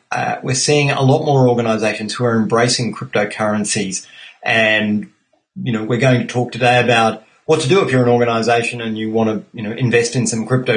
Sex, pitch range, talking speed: male, 110-130 Hz, 205 wpm